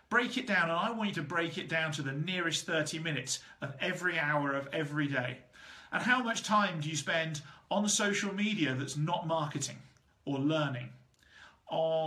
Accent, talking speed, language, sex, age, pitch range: British, 195 wpm, English, male, 40-59, 150-210 Hz